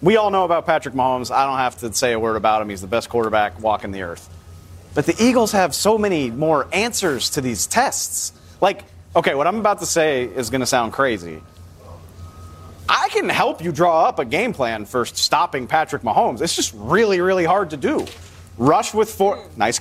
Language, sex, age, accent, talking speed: English, male, 30-49, American, 210 wpm